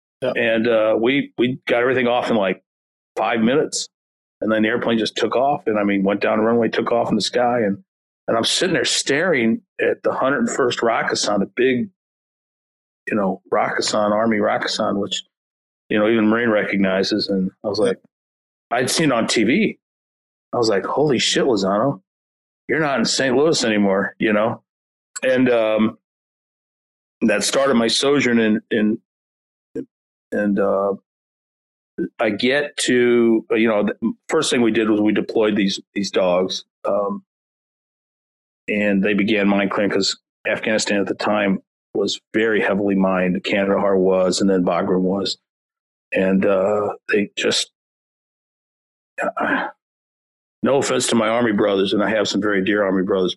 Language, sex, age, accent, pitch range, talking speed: English, male, 40-59, American, 95-115 Hz, 160 wpm